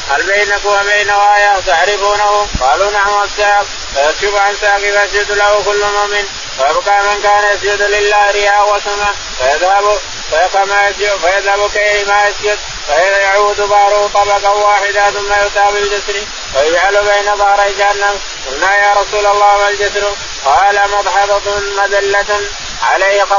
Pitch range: 200-205 Hz